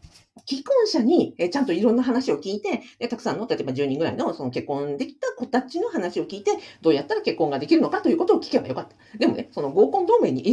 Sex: female